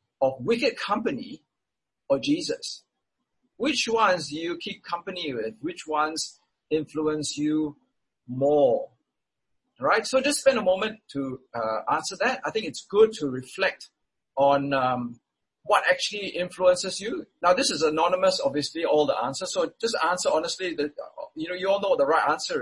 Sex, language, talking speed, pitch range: male, English, 160 wpm, 150-250 Hz